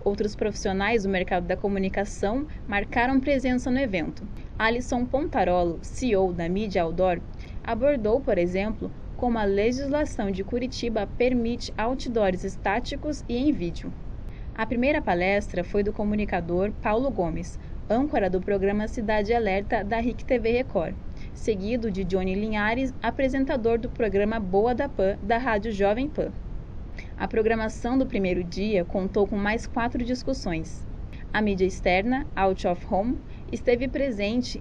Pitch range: 195-250 Hz